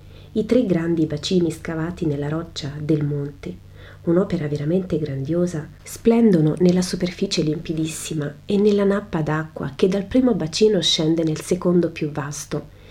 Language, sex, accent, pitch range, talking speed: Italian, female, native, 150-195 Hz, 135 wpm